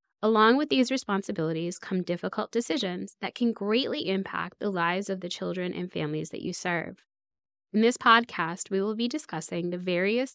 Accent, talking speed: American, 175 wpm